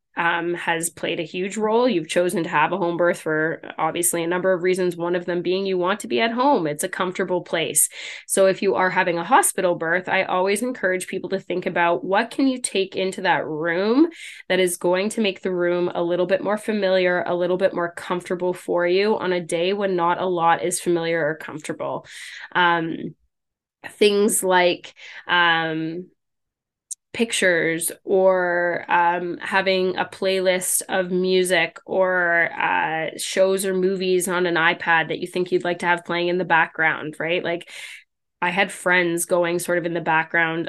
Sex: female